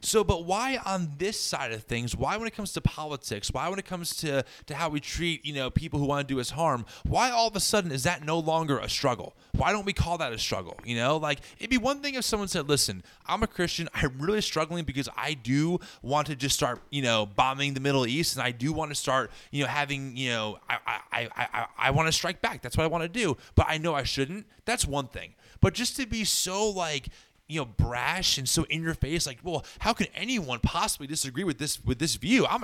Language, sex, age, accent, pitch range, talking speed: English, male, 20-39, American, 125-175 Hz, 255 wpm